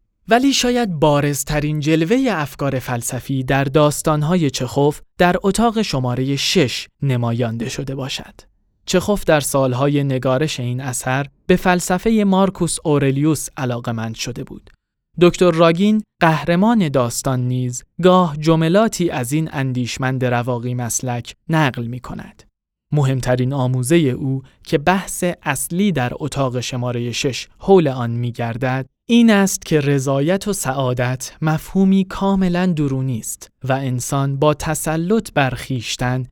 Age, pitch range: 20-39, 125-165 Hz